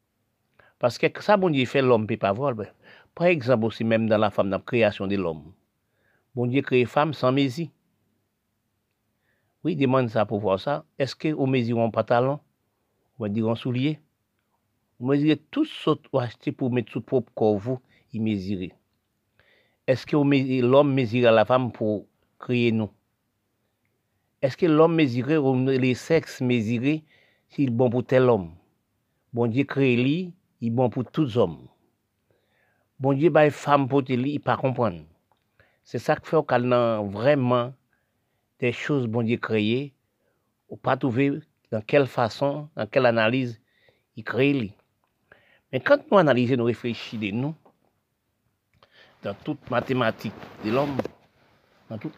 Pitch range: 110-140 Hz